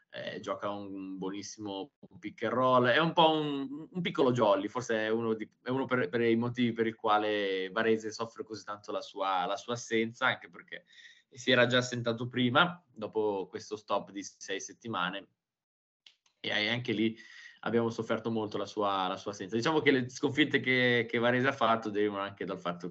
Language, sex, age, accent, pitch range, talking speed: Italian, male, 20-39, native, 105-125 Hz, 185 wpm